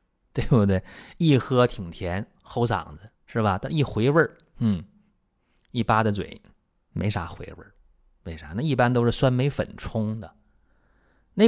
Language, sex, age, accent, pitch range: Chinese, male, 30-49, native, 90-125 Hz